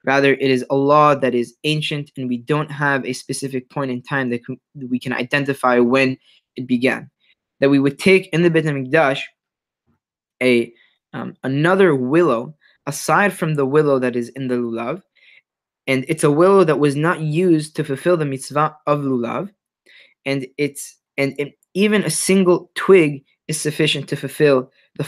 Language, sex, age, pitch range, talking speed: English, male, 20-39, 130-160 Hz, 175 wpm